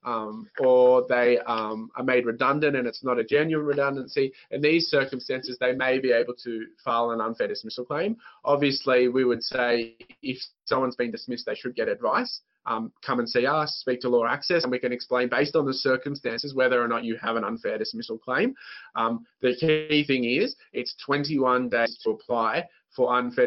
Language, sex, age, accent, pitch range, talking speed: English, male, 20-39, Australian, 115-145 Hz, 195 wpm